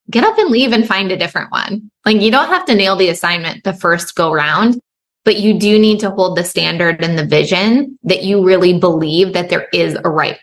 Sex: female